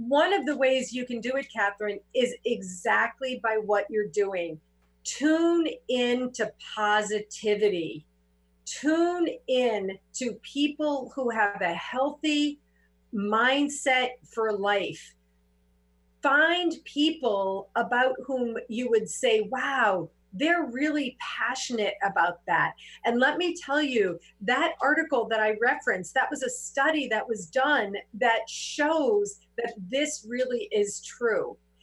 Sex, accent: female, American